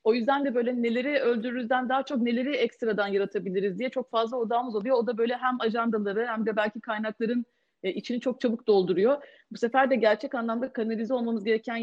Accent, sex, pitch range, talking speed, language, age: native, female, 215-275 Hz, 195 wpm, Turkish, 30-49